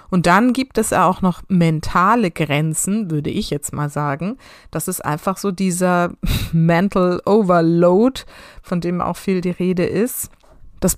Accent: German